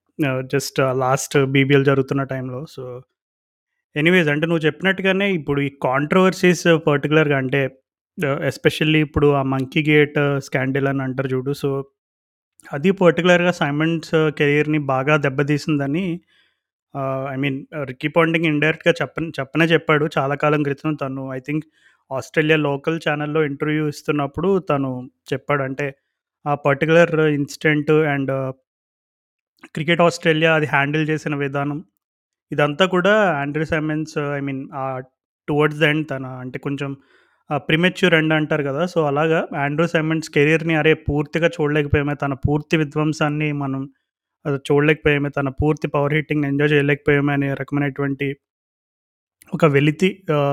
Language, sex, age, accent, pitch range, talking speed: Telugu, male, 30-49, native, 140-160 Hz, 120 wpm